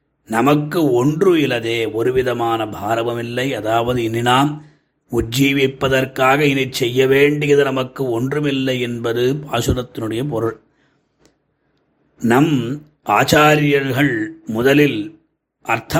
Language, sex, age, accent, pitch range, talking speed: Tamil, male, 30-49, native, 120-145 Hz, 80 wpm